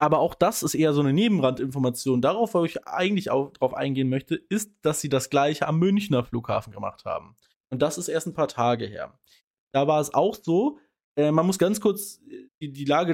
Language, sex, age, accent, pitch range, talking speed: German, male, 20-39, German, 135-185 Hz, 205 wpm